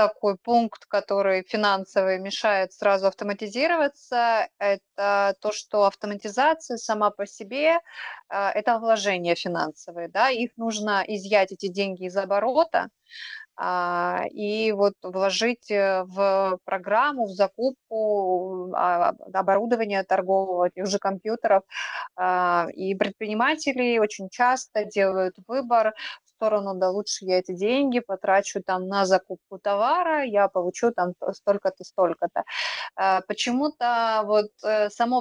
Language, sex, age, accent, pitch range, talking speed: Russian, female, 20-39, native, 195-235 Hz, 100 wpm